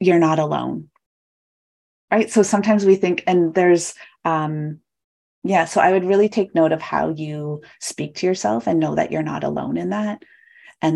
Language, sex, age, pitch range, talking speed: English, female, 30-49, 160-195 Hz, 180 wpm